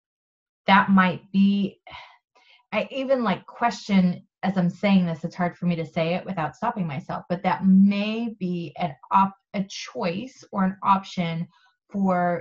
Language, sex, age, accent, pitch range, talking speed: English, female, 30-49, American, 165-195 Hz, 160 wpm